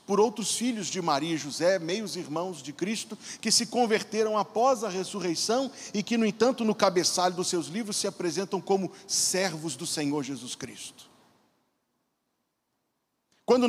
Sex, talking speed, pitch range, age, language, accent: male, 155 wpm, 195-260 Hz, 40-59, Portuguese, Brazilian